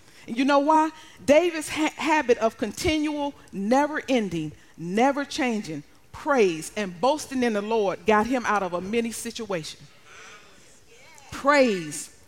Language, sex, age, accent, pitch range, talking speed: English, female, 40-59, American, 225-335 Hz, 120 wpm